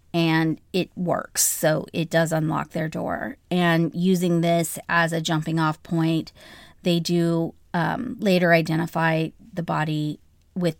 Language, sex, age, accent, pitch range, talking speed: English, female, 30-49, American, 160-185 Hz, 135 wpm